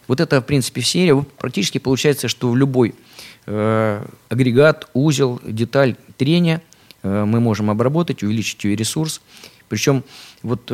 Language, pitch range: Russian, 105-130 Hz